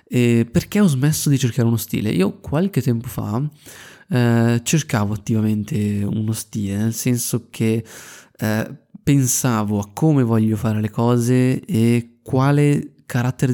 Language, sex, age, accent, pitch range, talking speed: Italian, male, 20-39, native, 110-130 Hz, 135 wpm